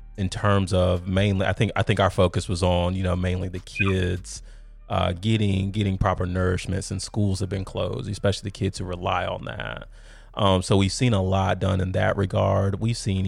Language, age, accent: English, 30-49, American